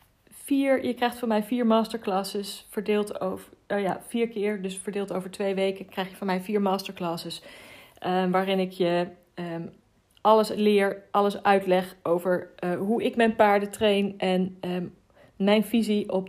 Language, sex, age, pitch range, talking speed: Dutch, female, 40-59, 190-235 Hz, 145 wpm